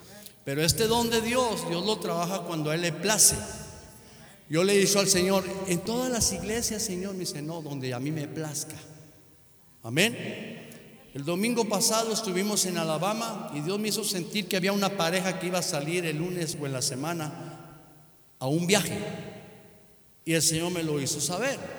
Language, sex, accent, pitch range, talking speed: Spanish, male, Mexican, 155-210 Hz, 185 wpm